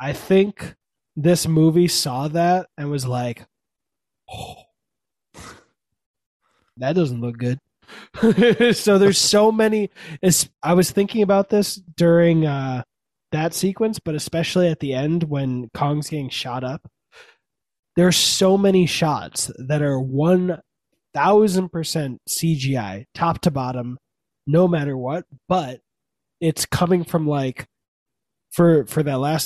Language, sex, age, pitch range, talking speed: English, male, 20-39, 135-180 Hz, 125 wpm